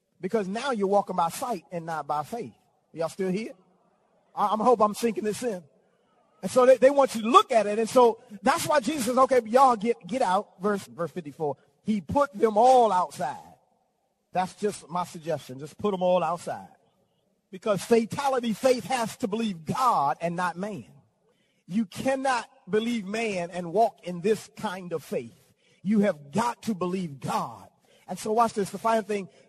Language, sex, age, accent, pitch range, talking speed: English, male, 40-59, American, 175-235 Hz, 185 wpm